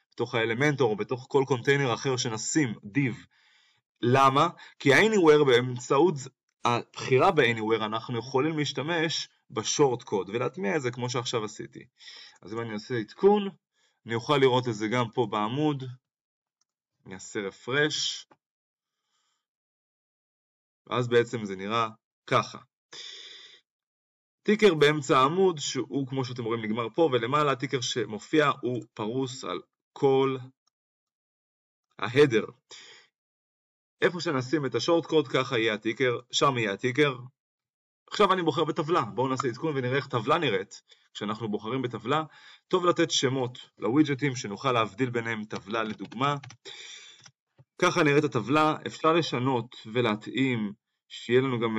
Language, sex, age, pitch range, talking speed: Hebrew, male, 20-39, 115-150 Hz, 115 wpm